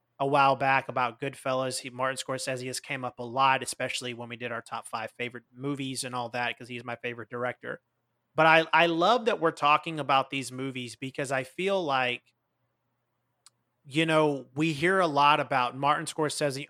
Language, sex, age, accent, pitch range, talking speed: English, male, 30-49, American, 125-150 Hz, 190 wpm